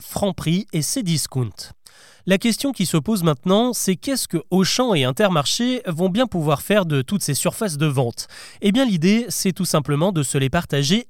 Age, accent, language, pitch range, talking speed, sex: 30-49, French, French, 145-200 Hz, 195 wpm, male